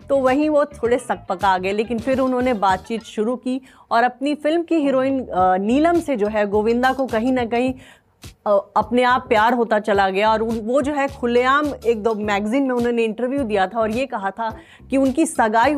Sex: female